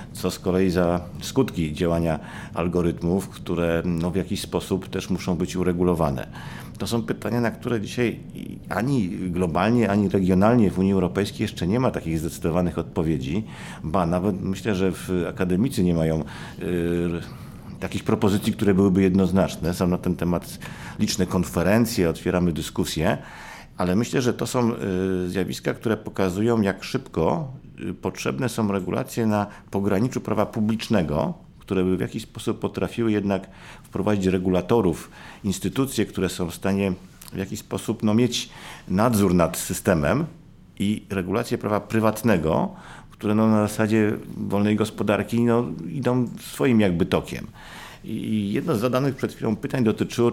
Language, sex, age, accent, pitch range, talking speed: Polish, male, 50-69, native, 90-110 Hz, 140 wpm